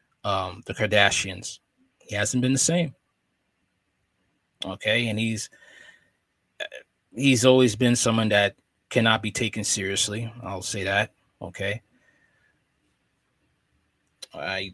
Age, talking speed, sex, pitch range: 20-39, 100 wpm, male, 105-130 Hz